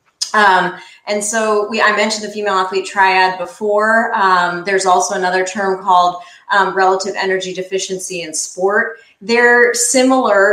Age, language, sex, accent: 30-49, English, female, American